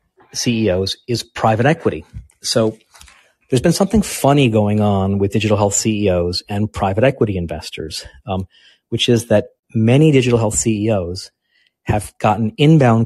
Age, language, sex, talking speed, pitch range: 40-59, English, male, 140 wpm, 100-120 Hz